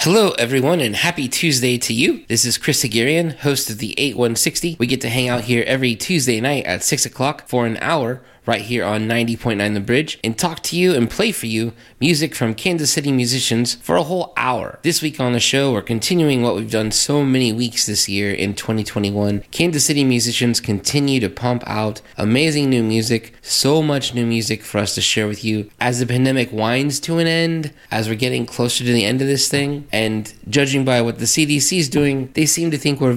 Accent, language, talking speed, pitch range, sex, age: American, English, 215 wpm, 105-135 Hz, male, 20-39